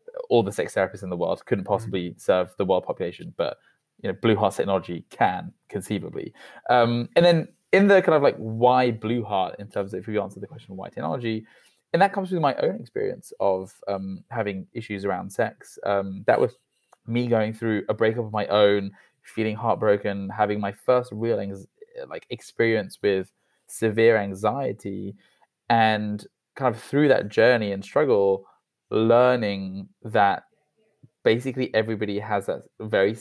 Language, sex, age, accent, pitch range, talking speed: English, male, 20-39, British, 100-125 Hz, 165 wpm